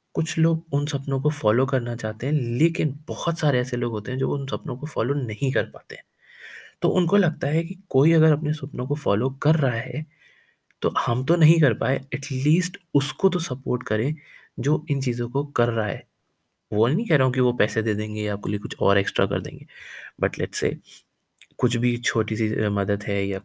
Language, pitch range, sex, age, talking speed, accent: Hindi, 110-150 Hz, male, 20-39, 210 wpm, native